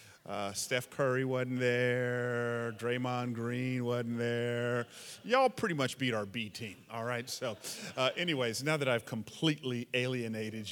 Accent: American